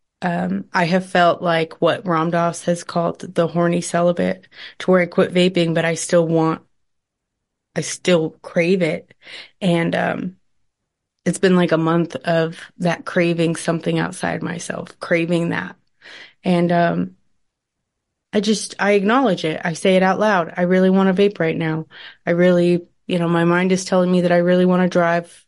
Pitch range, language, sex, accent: 165-185 Hz, English, female, American